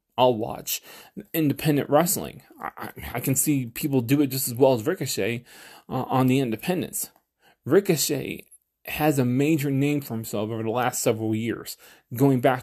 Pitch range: 120-150 Hz